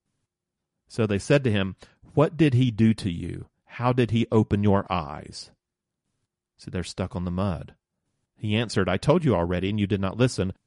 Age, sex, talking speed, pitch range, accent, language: 40-59, male, 190 wpm, 100-125 Hz, American, English